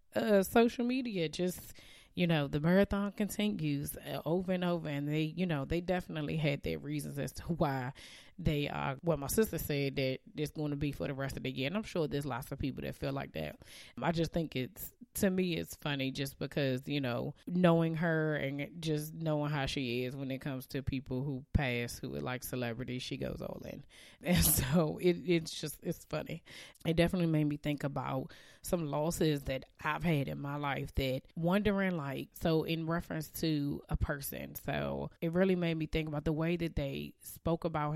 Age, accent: 20-39, American